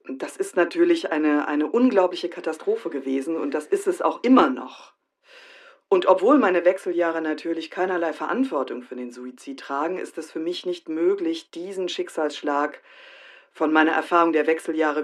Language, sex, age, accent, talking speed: German, female, 50-69, German, 155 wpm